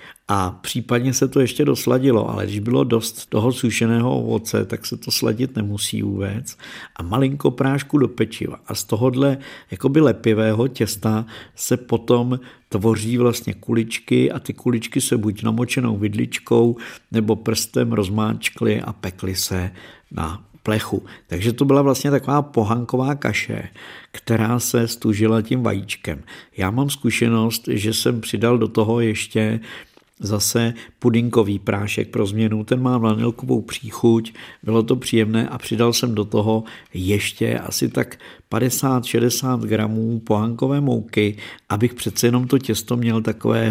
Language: Czech